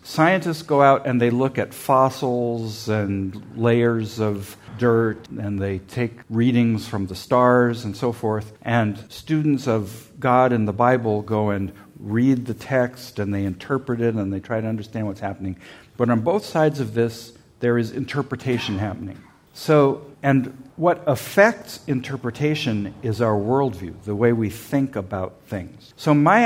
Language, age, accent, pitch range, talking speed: English, 50-69, American, 105-135 Hz, 160 wpm